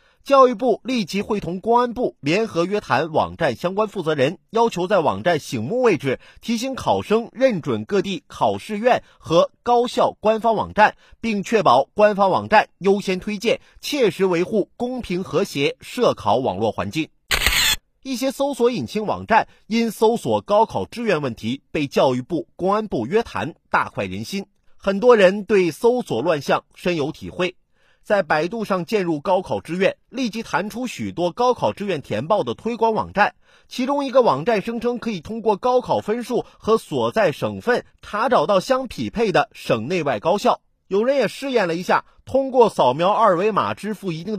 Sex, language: male, Chinese